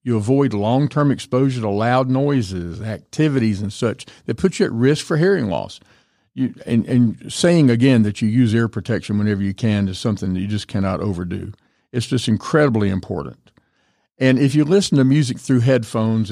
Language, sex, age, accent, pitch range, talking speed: English, male, 50-69, American, 105-130 Hz, 180 wpm